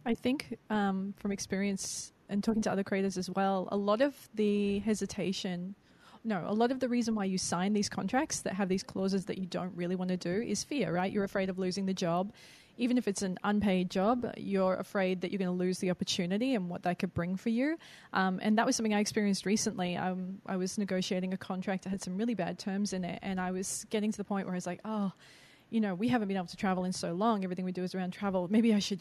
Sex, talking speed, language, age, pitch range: female, 255 wpm, English, 20-39, 185-225 Hz